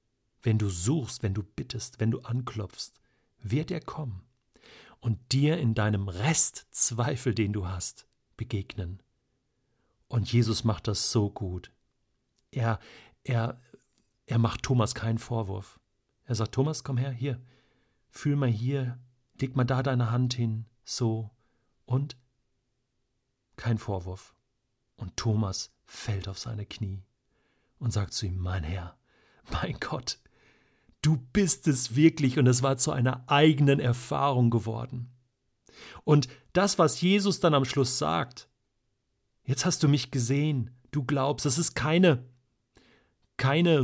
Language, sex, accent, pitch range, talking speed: German, male, German, 110-140 Hz, 135 wpm